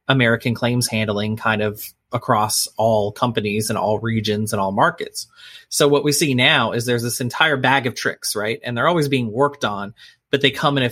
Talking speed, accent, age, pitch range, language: 210 wpm, American, 30-49, 115-140 Hz, English